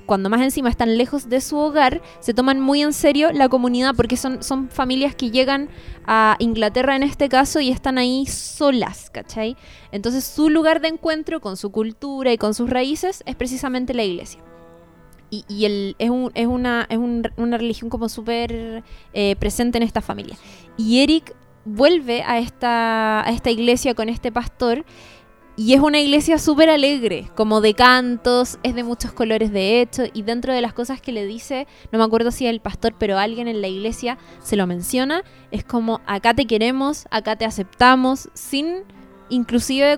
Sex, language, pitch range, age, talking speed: female, Spanish, 225-265 Hz, 20-39, 175 wpm